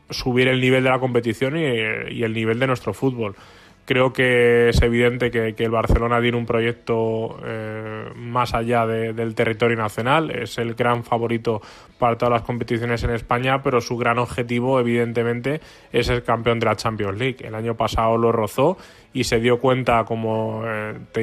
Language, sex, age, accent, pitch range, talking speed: Spanish, male, 20-39, Spanish, 115-125 Hz, 180 wpm